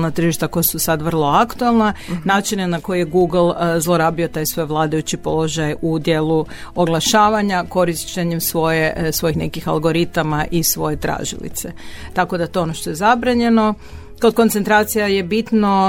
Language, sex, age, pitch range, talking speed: Croatian, female, 40-59, 160-195 Hz, 140 wpm